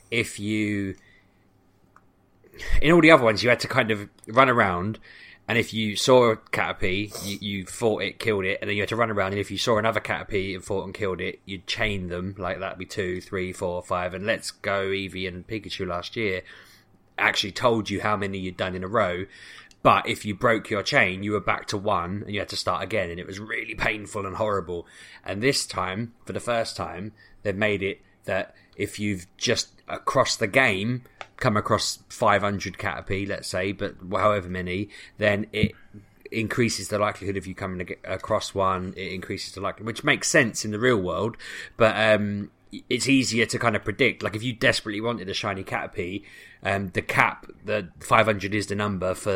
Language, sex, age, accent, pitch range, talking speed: English, male, 20-39, British, 95-110 Hz, 200 wpm